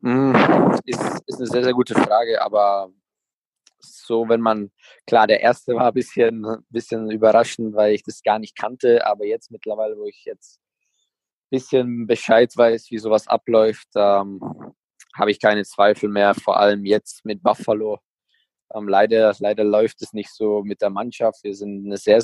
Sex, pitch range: male, 100-115 Hz